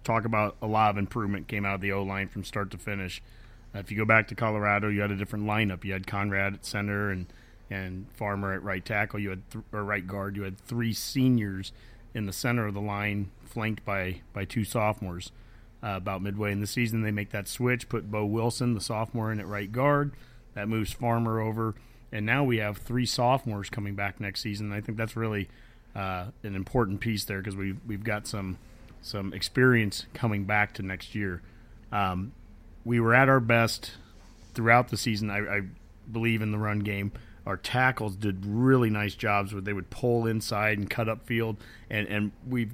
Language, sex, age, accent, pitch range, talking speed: English, male, 30-49, American, 100-115 Hz, 210 wpm